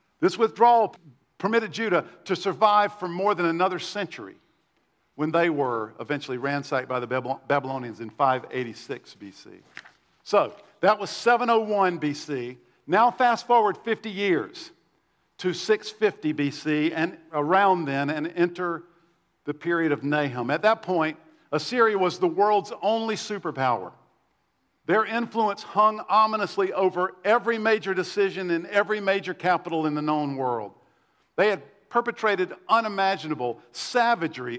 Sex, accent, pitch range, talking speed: male, American, 155-210 Hz, 130 wpm